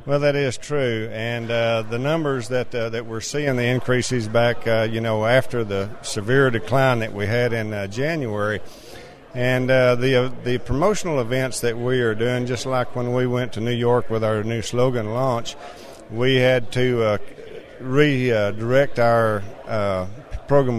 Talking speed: 180 wpm